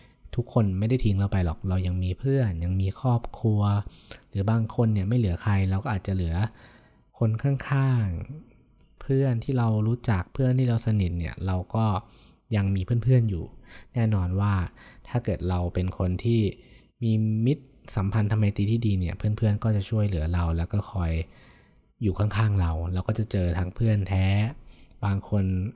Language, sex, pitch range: Thai, male, 90-110 Hz